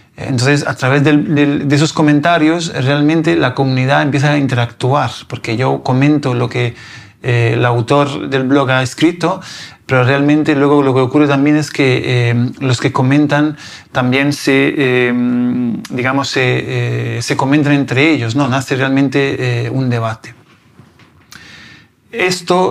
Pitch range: 125-150 Hz